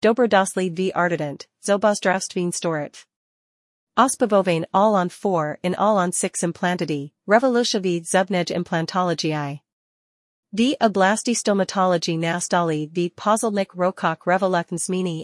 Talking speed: 85 wpm